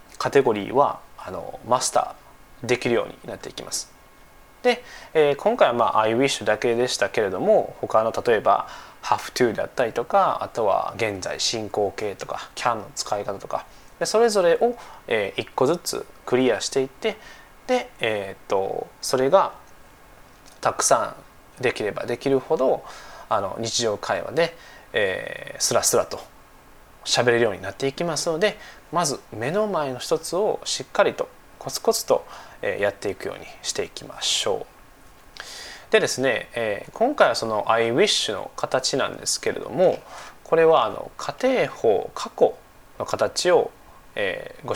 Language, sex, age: Japanese, male, 20-39